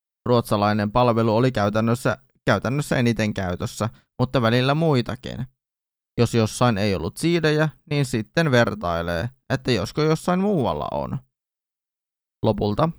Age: 20-39